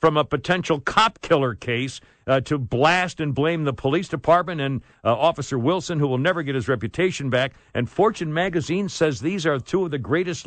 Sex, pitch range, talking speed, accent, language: male, 125-165 Hz, 195 wpm, American, English